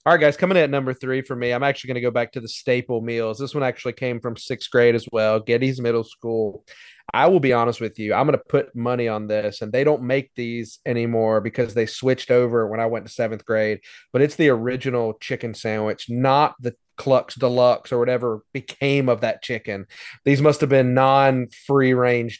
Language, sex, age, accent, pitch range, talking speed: English, male, 30-49, American, 115-140 Hz, 220 wpm